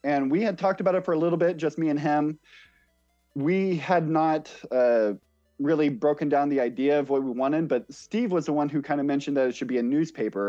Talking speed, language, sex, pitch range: 240 wpm, English, male, 125-155 Hz